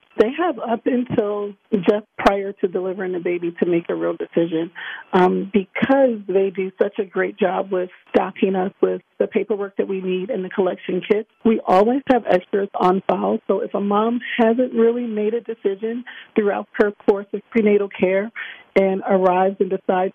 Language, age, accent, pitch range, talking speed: English, 40-59, American, 185-220 Hz, 180 wpm